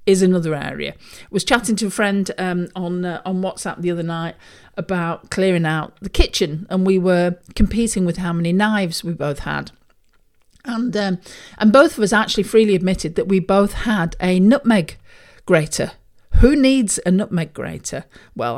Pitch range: 165-205 Hz